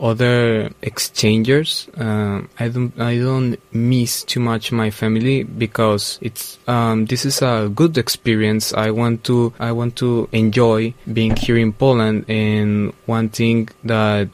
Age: 20-39